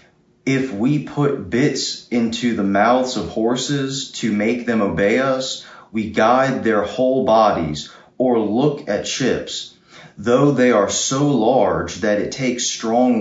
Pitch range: 105-125 Hz